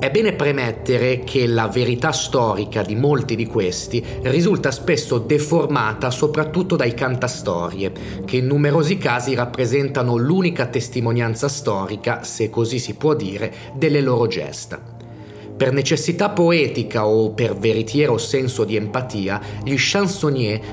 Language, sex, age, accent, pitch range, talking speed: Italian, male, 30-49, native, 115-150 Hz, 125 wpm